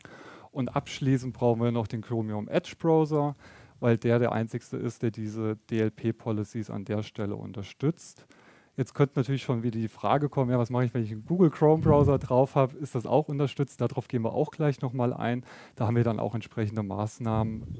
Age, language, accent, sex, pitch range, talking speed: 30-49, German, German, male, 110-130 Hz, 200 wpm